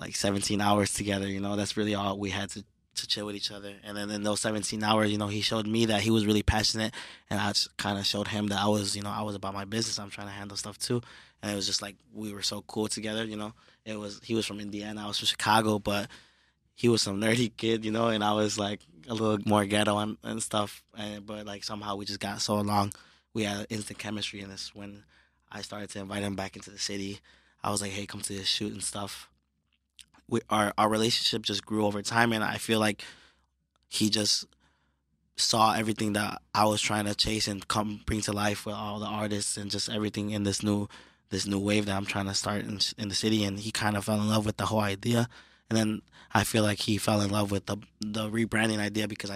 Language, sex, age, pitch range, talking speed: English, male, 20-39, 100-110 Hz, 250 wpm